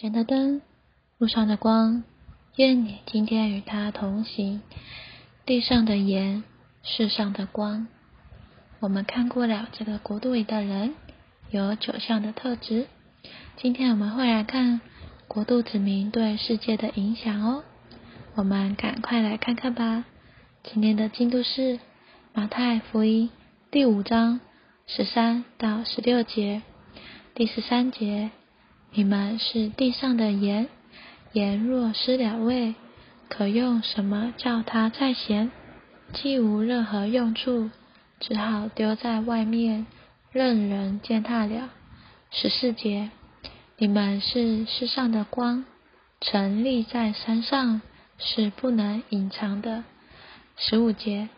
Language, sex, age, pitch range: Chinese, female, 20-39, 215-245 Hz